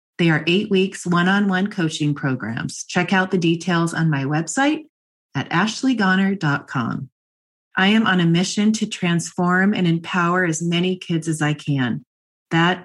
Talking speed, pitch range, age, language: 150 wpm, 160-205 Hz, 30-49, English